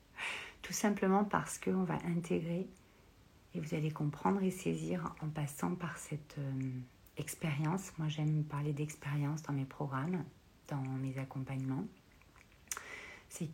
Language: French